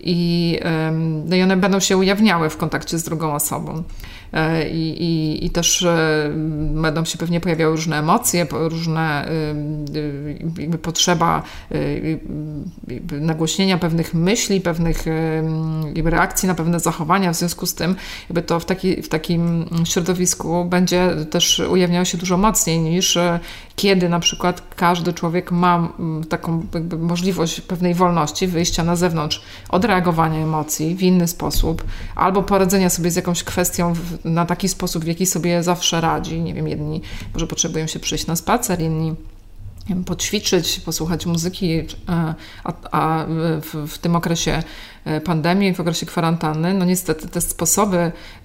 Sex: female